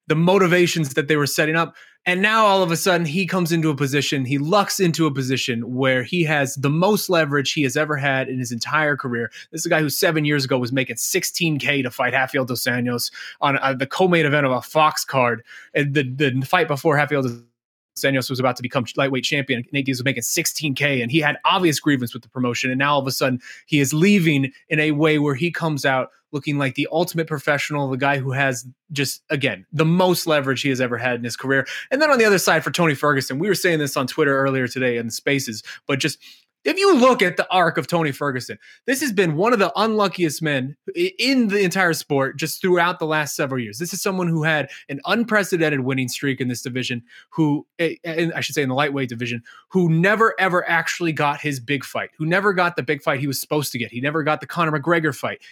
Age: 20-39